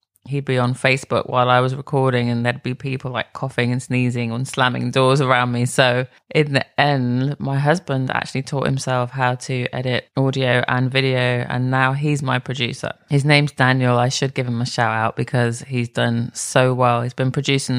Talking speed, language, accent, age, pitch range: 200 wpm, English, British, 20-39, 130-150 Hz